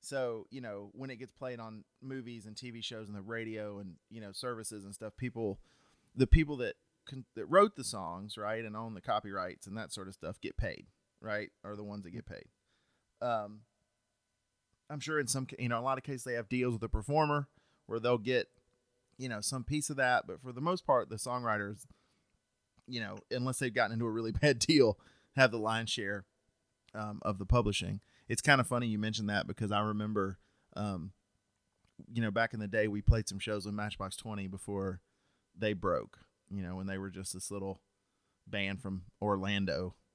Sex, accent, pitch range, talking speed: male, American, 100-120 Hz, 205 wpm